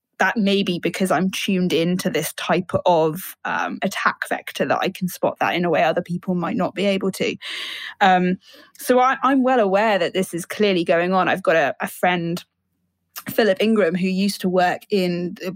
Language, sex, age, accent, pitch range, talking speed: English, female, 10-29, British, 180-215 Hz, 200 wpm